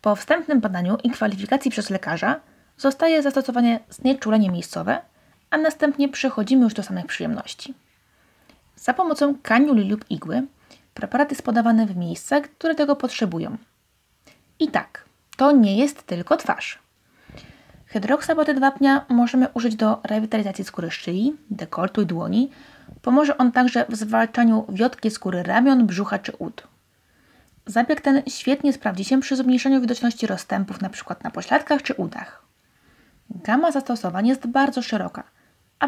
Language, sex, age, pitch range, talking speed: Polish, female, 20-39, 215-275 Hz, 135 wpm